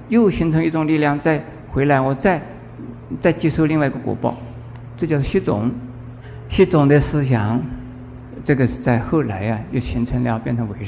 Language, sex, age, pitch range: Chinese, male, 50-69, 120-150 Hz